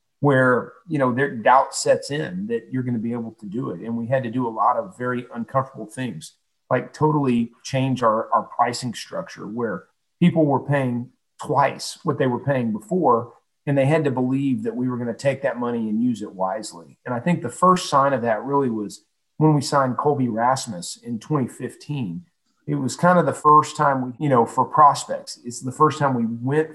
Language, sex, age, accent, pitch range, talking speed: English, male, 40-59, American, 120-145 Hz, 210 wpm